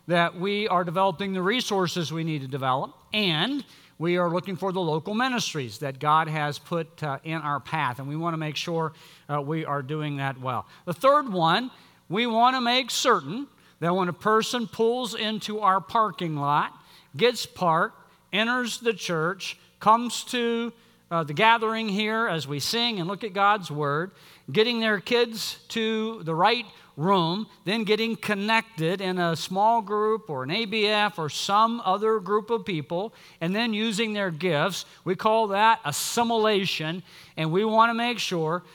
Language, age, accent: English, 50-69, American